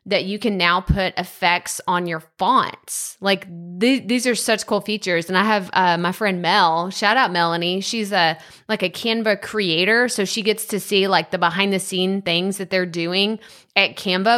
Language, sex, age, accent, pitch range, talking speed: English, female, 20-39, American, 185-230 Hz, 195 wpm